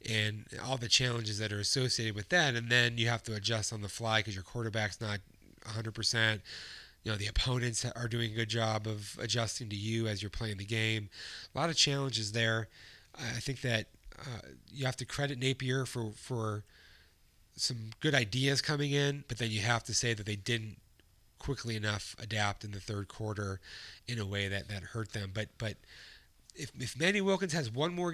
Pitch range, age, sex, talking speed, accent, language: 110-135 Hz, 30-49, male, 200 wpm, American, English